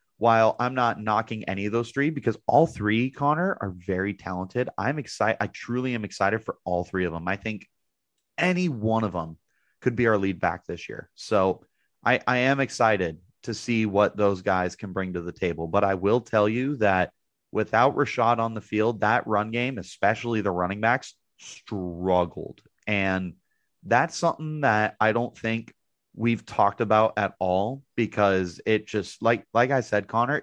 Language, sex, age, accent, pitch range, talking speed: English, male, 30-49, American, 100-125 Hz, 185 wpm